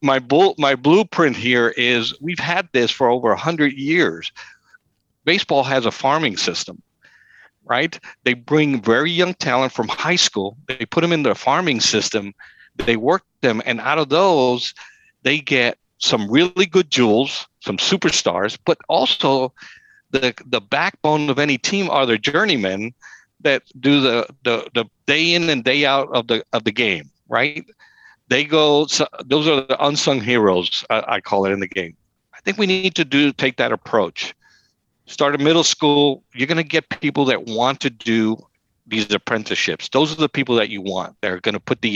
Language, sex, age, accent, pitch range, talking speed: English, male, 60-79, American, 110-150 Hz, 180 wpm